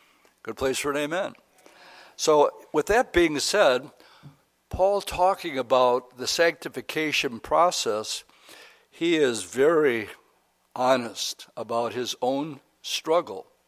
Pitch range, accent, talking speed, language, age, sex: 120-170 Hz, American, 105 wpm, English, 60-79, male